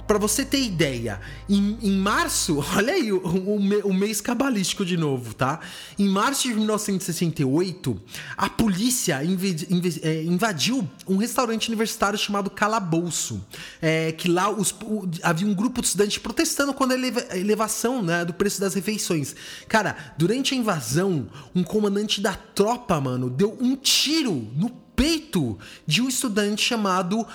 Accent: Brazilian